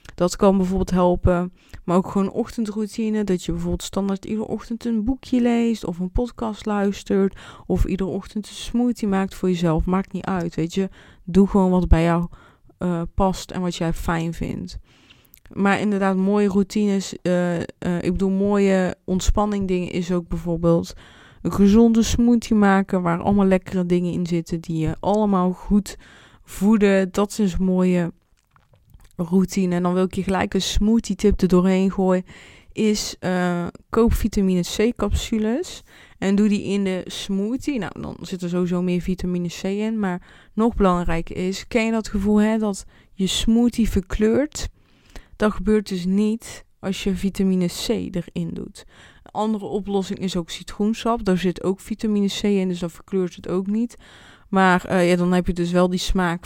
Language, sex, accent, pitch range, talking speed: Dutch, female, Dutch, 180-210 Hz, 175 wpm